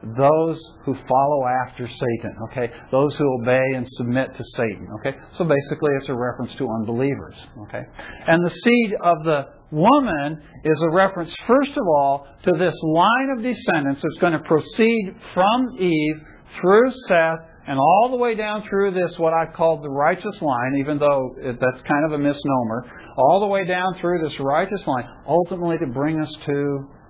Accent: American